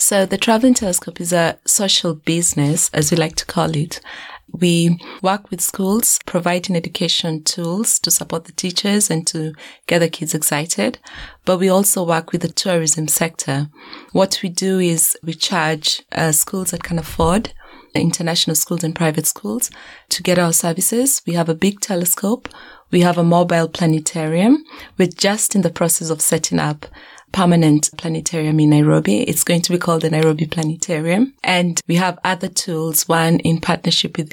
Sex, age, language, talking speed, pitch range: female, 20-39, English, 170 wpm, 160-185 Hz